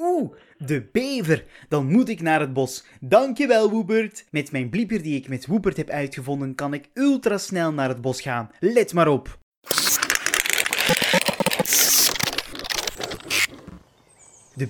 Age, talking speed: 20-39, 125 wpm